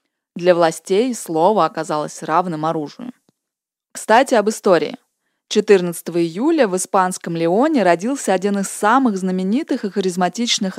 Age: 20-39